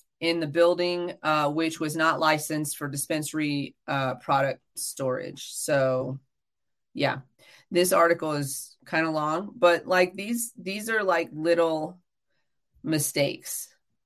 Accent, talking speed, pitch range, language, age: American, 125 wpm, 150-180 Hz, English, 30-49